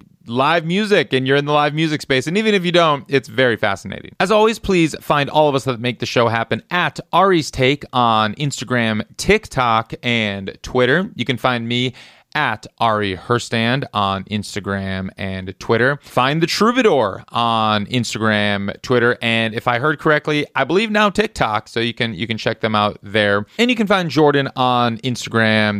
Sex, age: male, 30-49